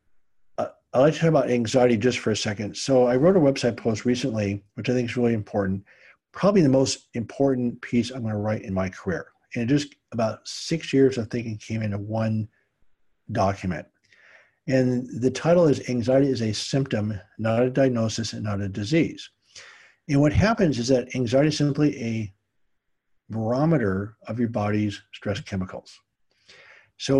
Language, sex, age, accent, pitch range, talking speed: English, male, 50-69, American, 105-130 Hz, 170 wpm